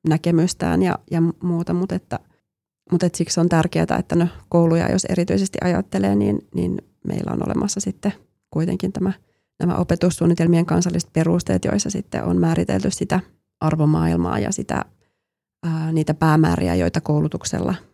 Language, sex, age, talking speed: Finnish, female, 30-49, 120 wpm